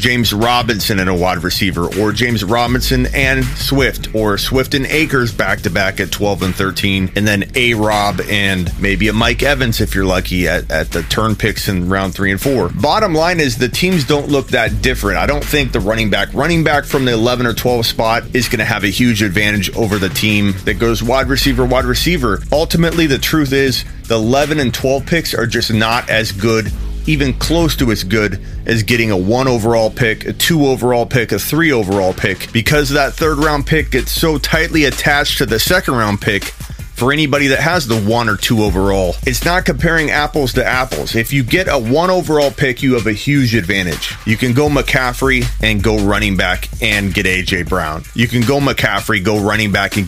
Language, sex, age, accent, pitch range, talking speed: English, male, 30-49, American, 100-135 Hz, 210 wpm